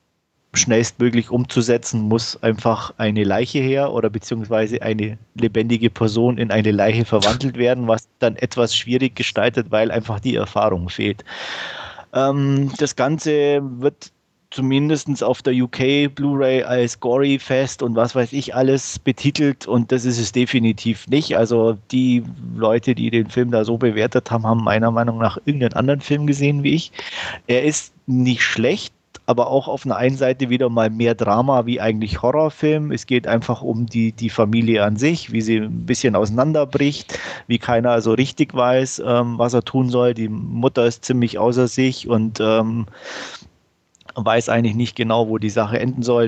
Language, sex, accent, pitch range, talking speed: German, male, German, 110-130 Hz, 165 wpm